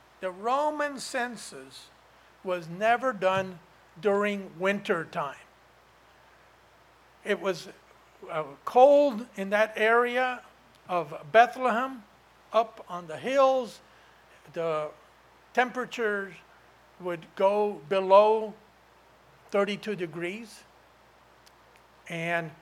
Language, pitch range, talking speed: English, 185-235 Hz, 80 wpm